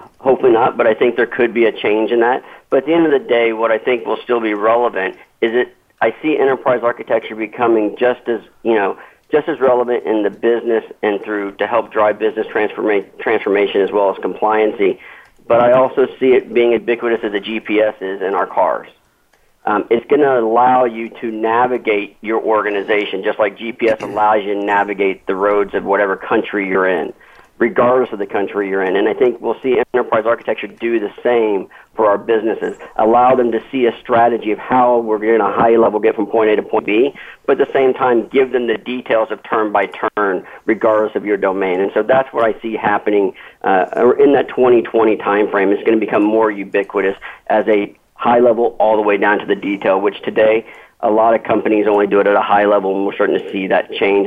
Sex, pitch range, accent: male, 105-120 Hz, American